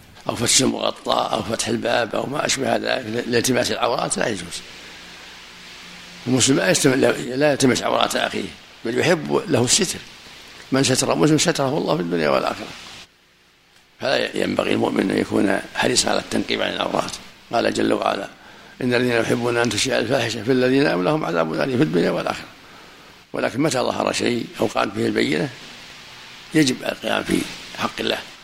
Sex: male